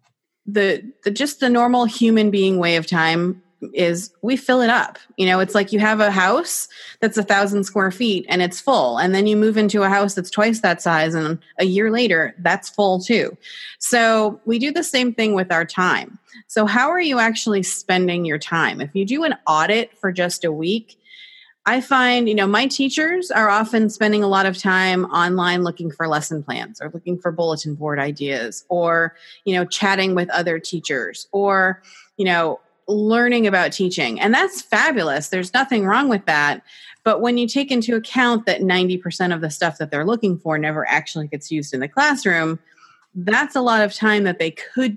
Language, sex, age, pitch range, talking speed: English, female, 30-49, 170-225 Hz, 200 wpm